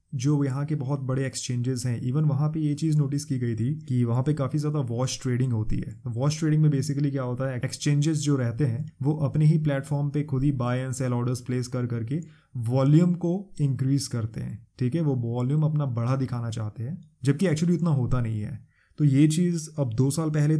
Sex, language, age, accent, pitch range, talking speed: male, Hindi, 20-39, native, 125-150 Hz, 225 wpm